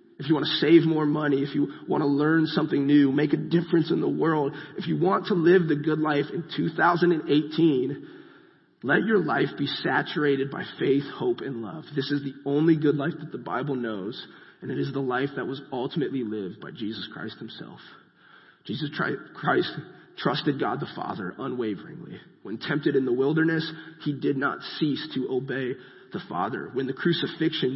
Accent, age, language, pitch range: American, 30-49, English, 140-165 Hz